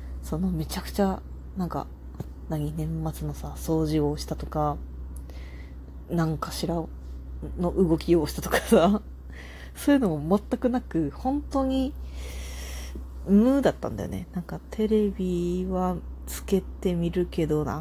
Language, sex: Japanese, female